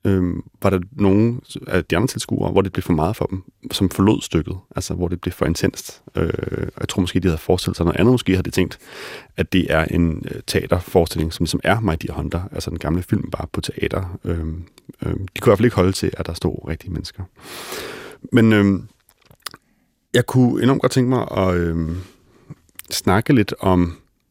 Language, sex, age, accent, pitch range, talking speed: Danish, male, 30-49, native, 90-105 Hz, 210 wpm